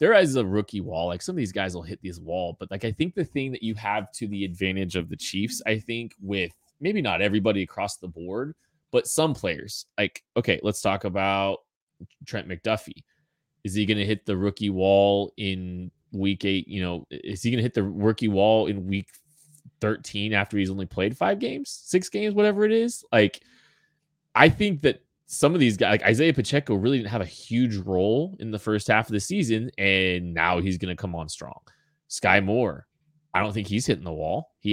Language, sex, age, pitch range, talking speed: English, male, 20-39, 95-125 Hz, 215 wpm